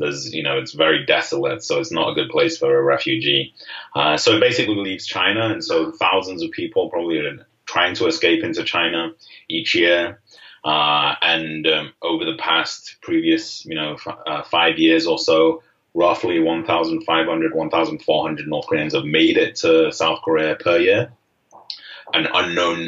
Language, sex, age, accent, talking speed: English, male, 30-49, British, 170 wpm